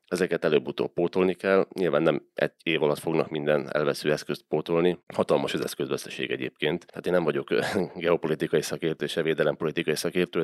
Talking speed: 160 wpm